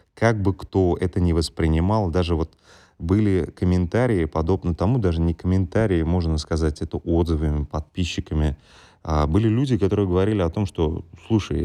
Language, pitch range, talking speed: Russian, 80-100 Hz, 145 wpm